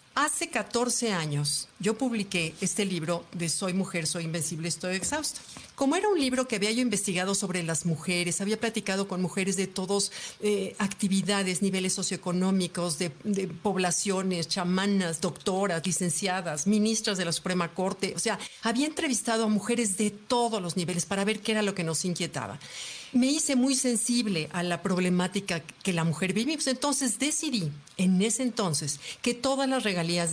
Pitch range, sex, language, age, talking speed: 185-240 Hz, female, Spanish, 50-69, 170 wpm